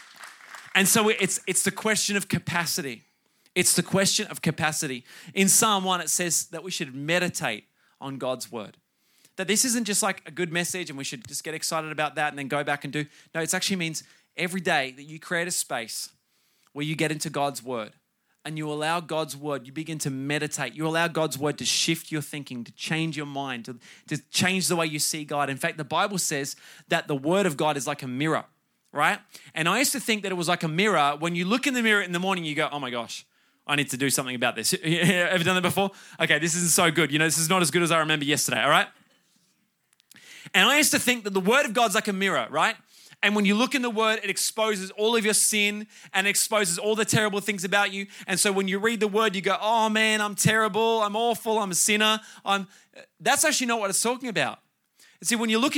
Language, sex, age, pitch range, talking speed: English, male, 20-39, 155-210 Hz, 245 wpm